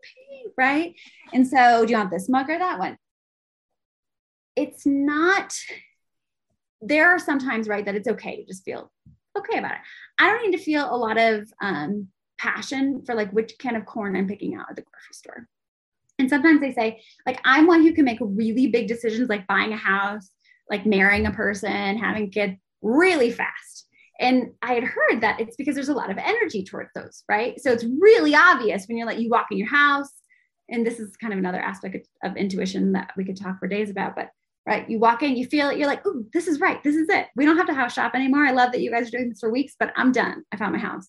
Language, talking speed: English, 230 wpm